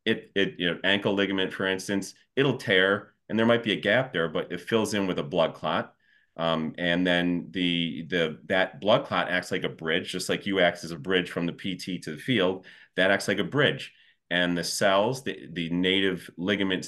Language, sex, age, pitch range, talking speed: English, male, 30-49, 85-100 Hz, 220 wpm